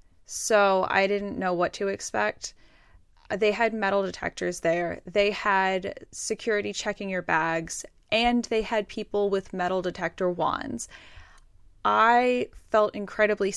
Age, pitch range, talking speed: 10-29, 175-210 Hz, 130 wpm